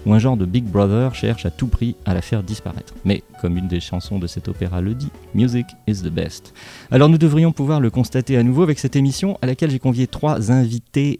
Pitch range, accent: 105-135 Hz, French